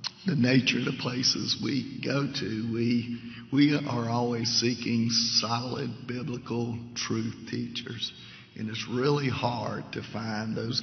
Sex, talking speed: male, 135 wpm